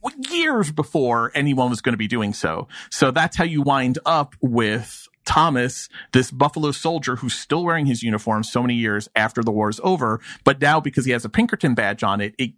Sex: male